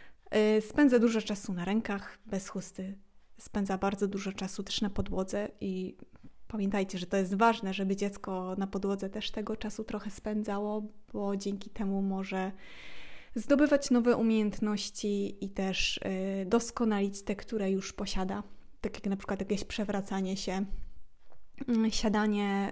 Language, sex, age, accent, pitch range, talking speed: Polish, female, 20-39, native, 195-230 Hz, 135 wpm